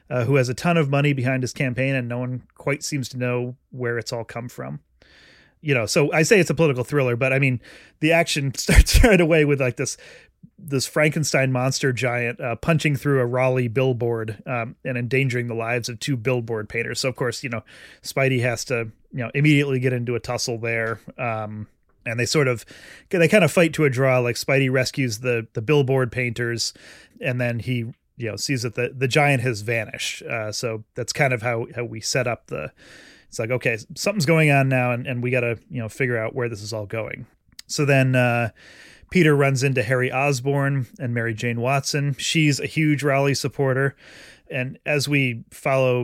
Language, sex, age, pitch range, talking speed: English, male, 30-49, 120-140 Hz, 210 wpm